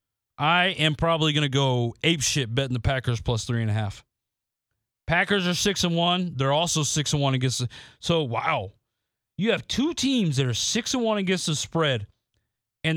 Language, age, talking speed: English, 30-49, 190 wpm